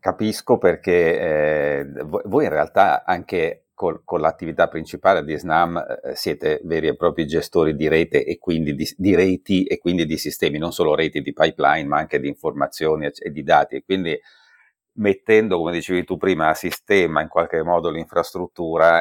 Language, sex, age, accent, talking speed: Italian, male, 40-59, native, 170 wpm